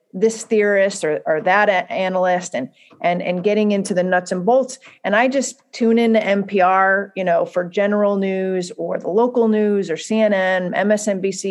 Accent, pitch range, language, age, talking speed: American, 185-235 Hz, English, 40-59, 170 wpm